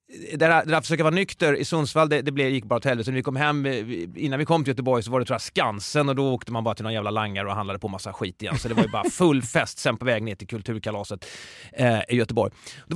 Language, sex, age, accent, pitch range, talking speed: Swedish, male, 30-49, native, 120-155 Hz, 285 wpm